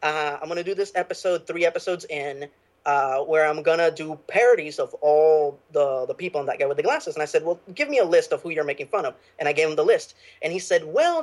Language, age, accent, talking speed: English, 20-39, American, 280 wpm